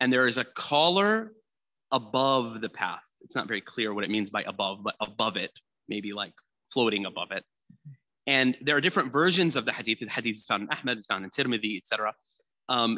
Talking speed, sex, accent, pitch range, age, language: 215 wpm, male, American, 125-165 Hz, 30-49, English